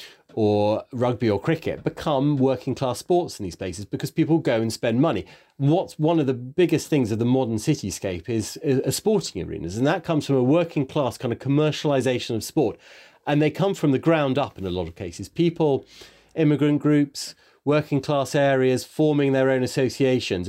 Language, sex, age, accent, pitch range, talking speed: English, male, 30-49, British, 110-140 Hz, 195 wpm